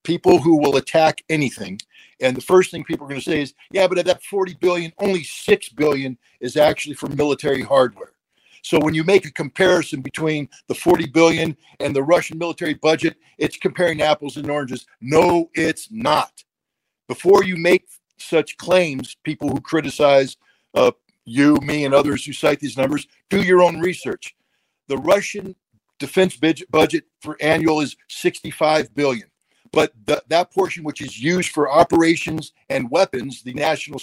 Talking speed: 170 wpm